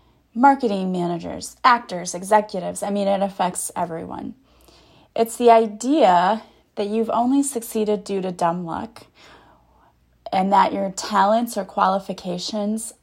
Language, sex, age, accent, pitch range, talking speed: English, female, 20-39, American, 185-235 Hz, 120 wpm